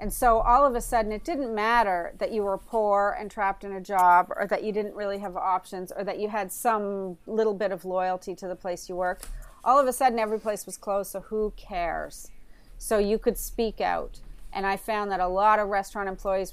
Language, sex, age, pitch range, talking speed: English, female, 40-59, 185-225 Hz, 230 wpm